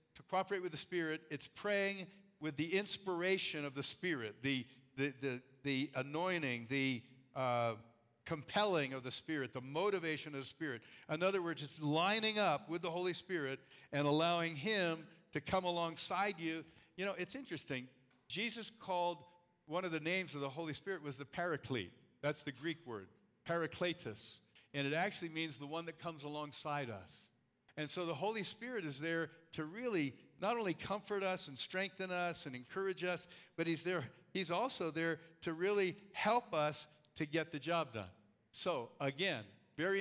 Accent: American